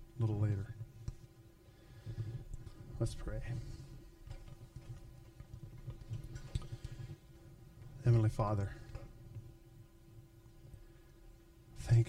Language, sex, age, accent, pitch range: English, male, 40-59, American, 110-120 Hz